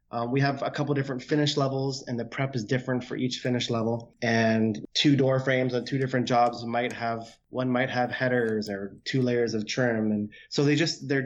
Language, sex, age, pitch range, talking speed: English, male, 20-39, 115-135 Hz, 220 wpm